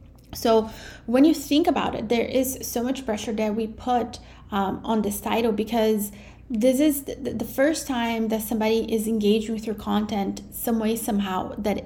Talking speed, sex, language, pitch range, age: 175 wpm, female, English, 210-245 Hz, 30-49